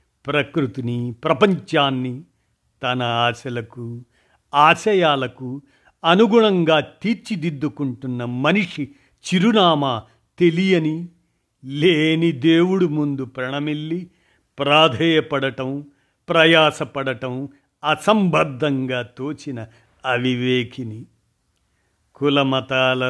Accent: native